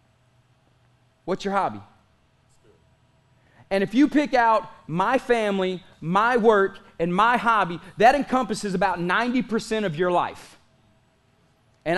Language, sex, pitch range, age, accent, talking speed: English, male, 125-185 Hz, 30-49, American, 115 wpm